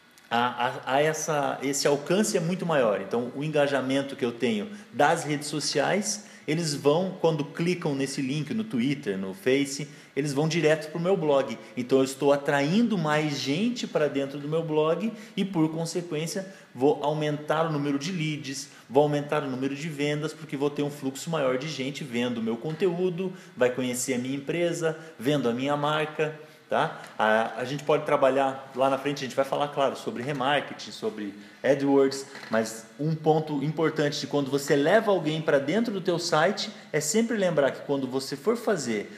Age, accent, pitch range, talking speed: 20-39, Brazilian, 135-165 Hz, 180 wpm